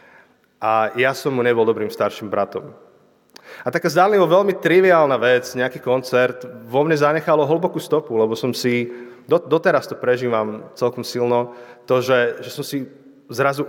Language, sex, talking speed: Slovak, male, 160 wpm